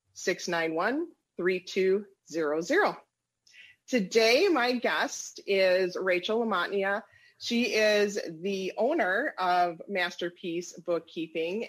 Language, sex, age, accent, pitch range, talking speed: English, female, 30-49, American, 180-225 Hz, 75 wpm